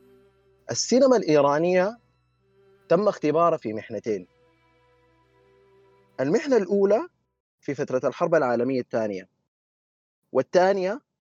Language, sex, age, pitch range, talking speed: Arabic, male, 30-49, 125-170 Hz, 75 wpm